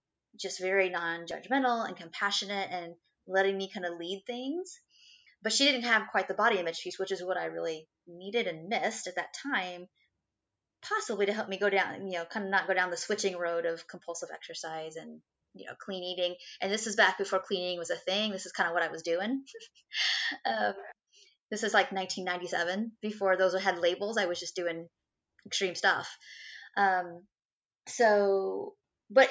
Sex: female